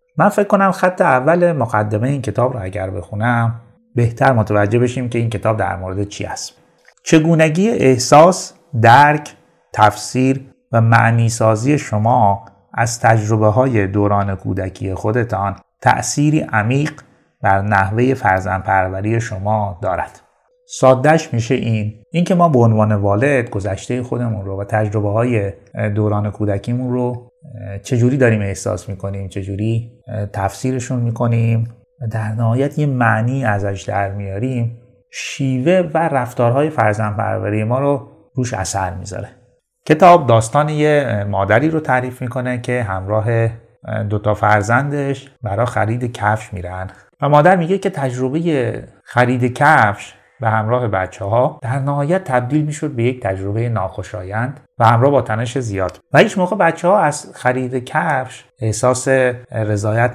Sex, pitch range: male, 105-130 Hz